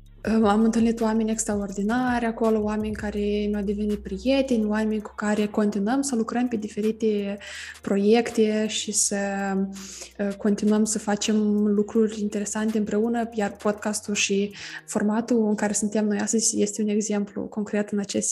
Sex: female